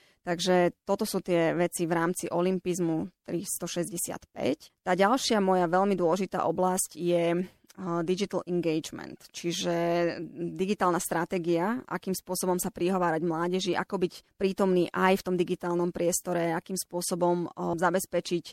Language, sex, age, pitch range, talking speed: Slovak, female, 30-49, 170-185 Hz, 120 wpm